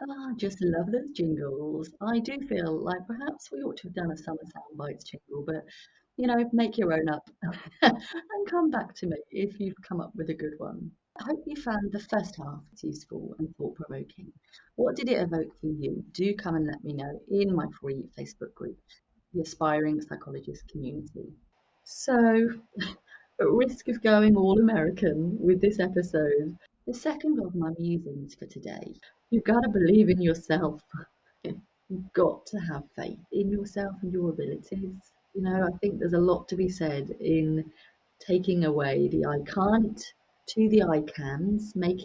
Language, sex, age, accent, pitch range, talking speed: English, female, 30-49, British, 160-210 Hz, 180 wpm